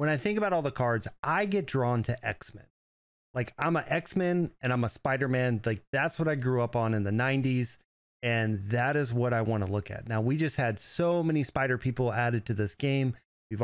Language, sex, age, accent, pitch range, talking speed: English, male, 30-49, American, 110-140 Hz, 230 wpm